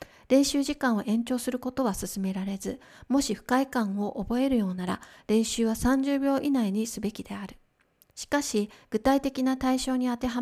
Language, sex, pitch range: Japanese, female, 205-255 Hz